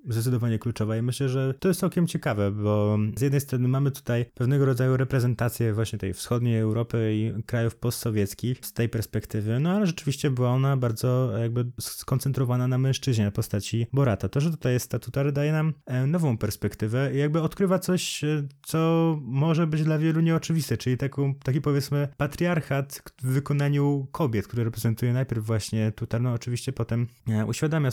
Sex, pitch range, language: male, 110-135 Hz, Polish